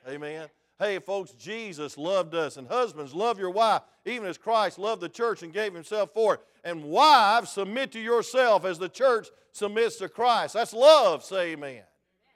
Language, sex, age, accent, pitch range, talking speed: English, male, 50-69, American, 155-230 Hz, 180 wpm